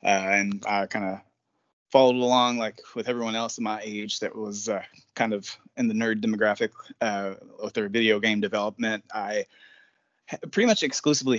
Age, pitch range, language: 20-39, 100-130 Hz, English